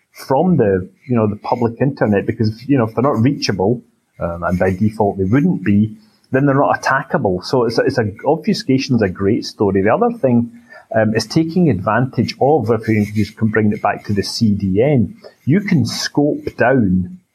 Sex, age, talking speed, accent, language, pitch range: male, 30-49, 190 wpm, British, English, 105-125 Hz